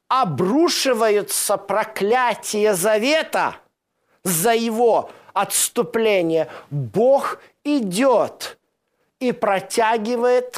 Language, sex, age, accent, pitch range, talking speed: Russian, male, 50-69, native, 205-275 Hz, 55 wpm